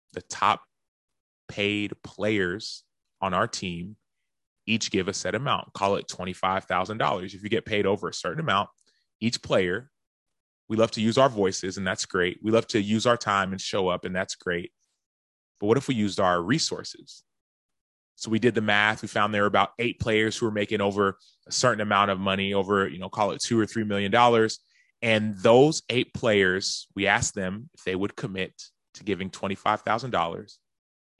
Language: English